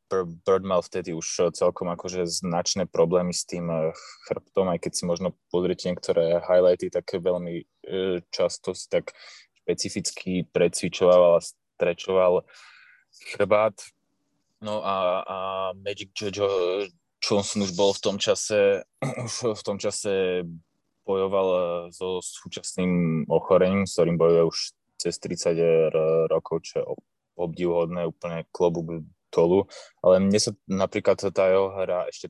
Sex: male